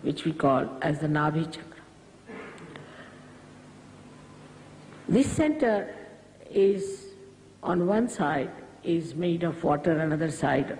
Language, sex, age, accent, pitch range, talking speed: English, female, 50-69, Indian, 150-225 Hz, 105 wpm